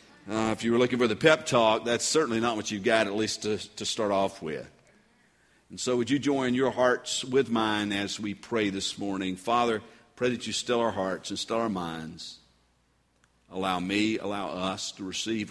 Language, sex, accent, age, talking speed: English, male, American, 50-69, 205 wpm